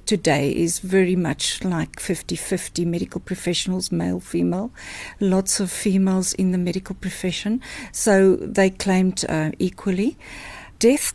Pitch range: 190-225 Hz